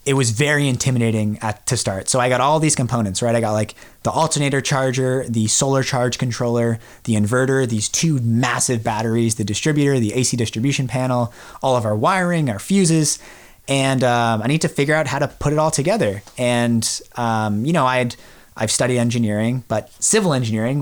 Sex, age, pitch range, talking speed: male, 30-49, 115-140 Hz, 185 wpm